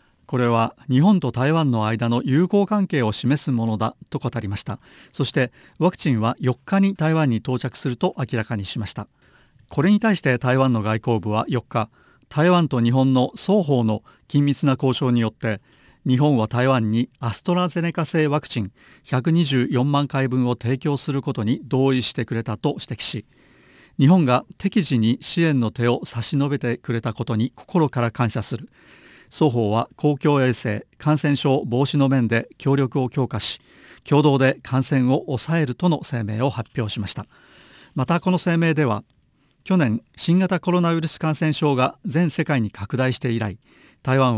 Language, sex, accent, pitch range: Japanese, male, native, 120-150 Hz